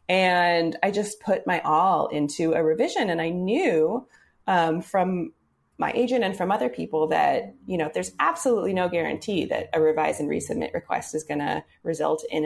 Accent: American